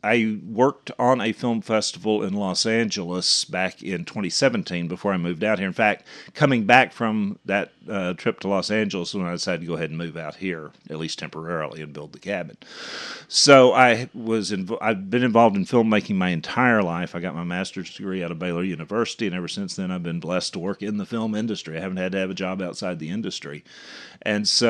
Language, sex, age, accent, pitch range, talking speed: English, male, 40-59, American, 90-115 Hz, 225 wpm